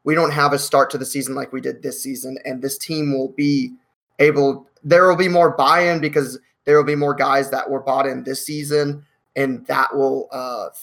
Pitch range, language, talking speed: 130-155 Hz, English, 225 wpm